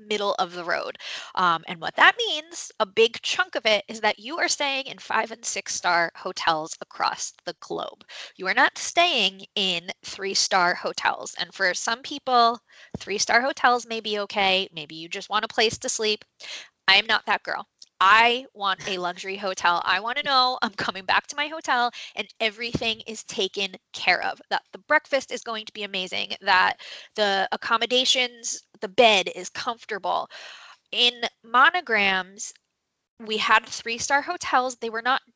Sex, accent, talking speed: female, American, 175 wpm